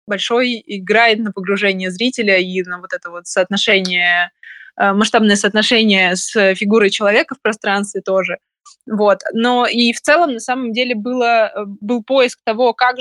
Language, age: Russian, 20-39